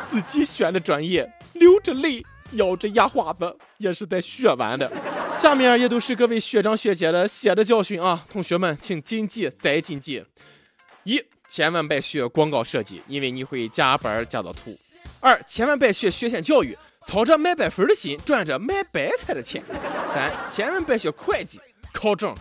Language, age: Chinese, 20-39